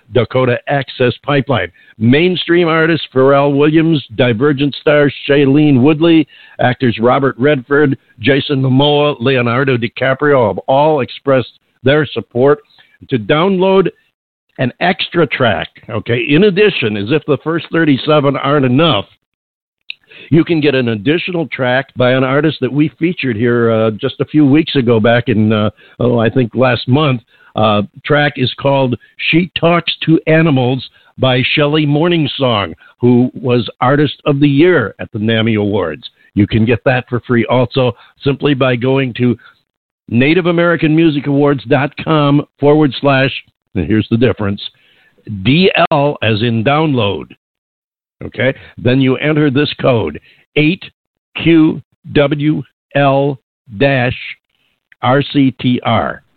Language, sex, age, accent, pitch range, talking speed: English, male, 60-79, American, 120-150 Hz, 125 wpm